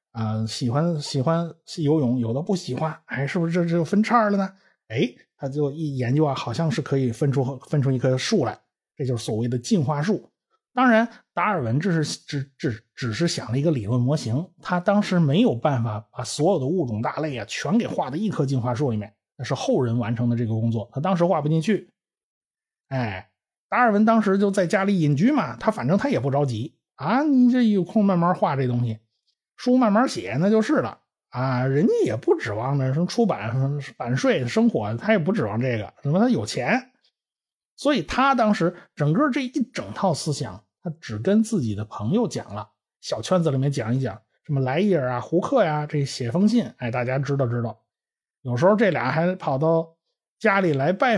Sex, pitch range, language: male, 125-195 Hz, Chinese